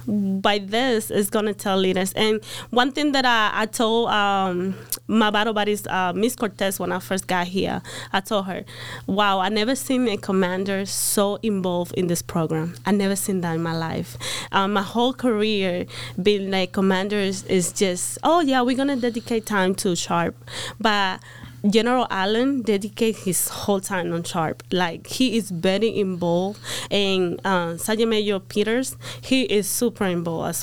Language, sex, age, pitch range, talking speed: English, female, 20-39, 185-225 Hz, 170 wpm